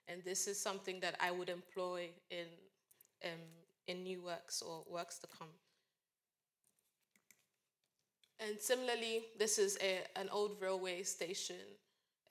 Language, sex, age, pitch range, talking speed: English, female, 20-39, 175-195 Hz, 125 wpm